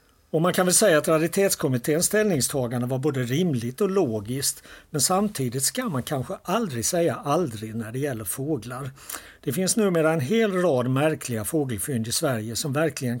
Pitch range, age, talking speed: 120-160 Hz, 60-79, 170 wpm